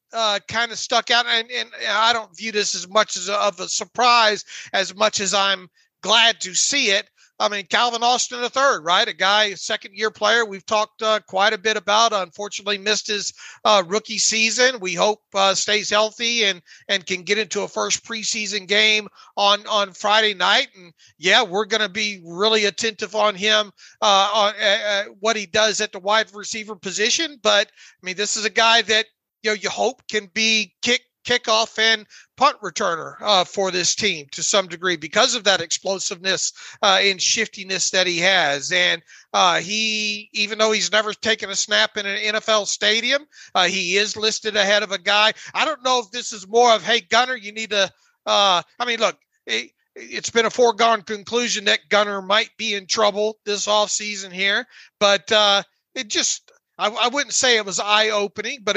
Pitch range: 195-220 Hz